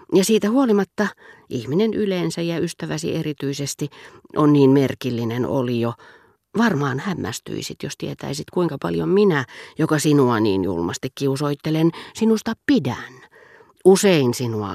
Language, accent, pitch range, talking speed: Finnish, native, 125-175 Hz, 120 wpm